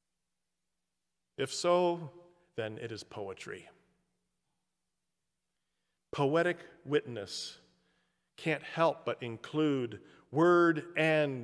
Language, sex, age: English, male, 40-59